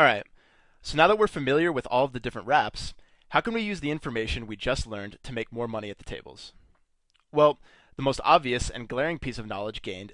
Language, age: English, 20-39